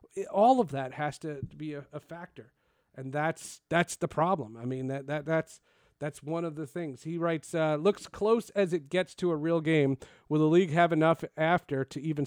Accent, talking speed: American, 210 wpm